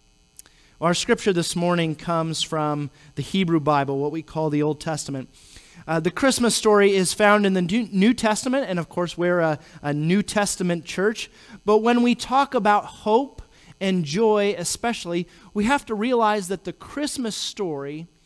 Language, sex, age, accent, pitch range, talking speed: English, male, 30-49, American, 160-205 Hz, 170 wpm